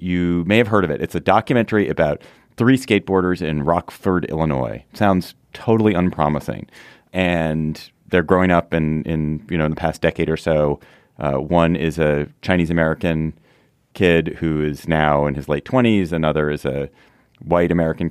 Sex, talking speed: male, 165 wpm